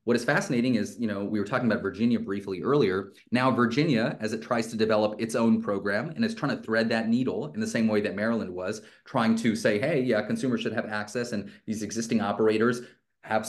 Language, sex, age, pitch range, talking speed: English, male, 30-49, 105-130 Hz, 225 wpm